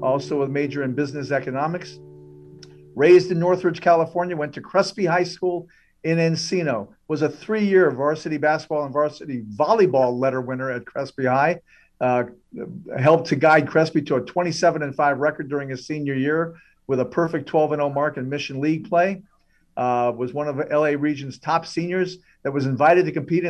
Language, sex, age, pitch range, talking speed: English, male, 50-69, 135-170 Hz, 175 wpm